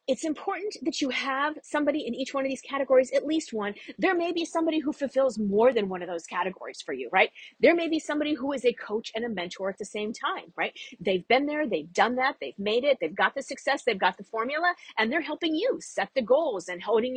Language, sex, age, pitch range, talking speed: English, female, 40-59, 220-310 Hz, 250 wpm